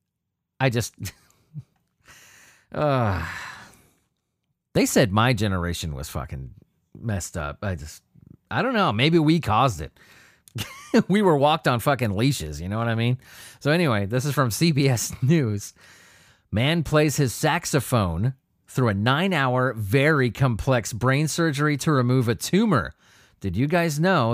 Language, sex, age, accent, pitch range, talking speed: English, male, 30-49, American, 110-155 Hz, 140 wpm